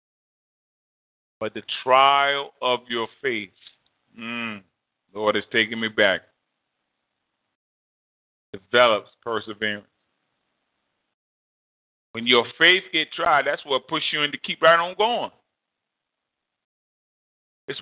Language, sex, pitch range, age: English, male, 115-180 Hz, 40-59